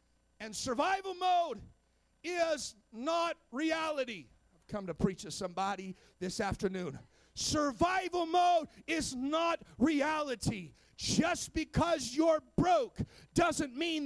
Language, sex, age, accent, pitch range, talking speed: English, male, 40-59, American, 225-320 Hz, 105 wpm